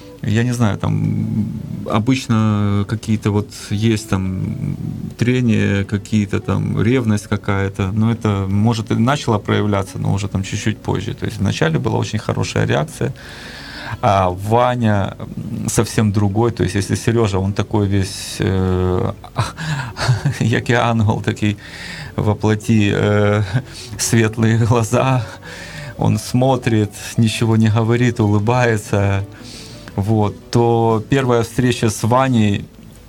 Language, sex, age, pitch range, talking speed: Ukrainian, male, 30-49, 100-120 Hz, 115 wpm